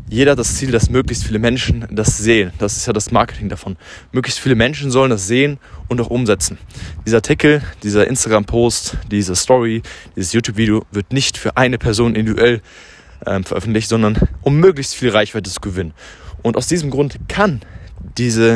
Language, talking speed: German, 170 wpm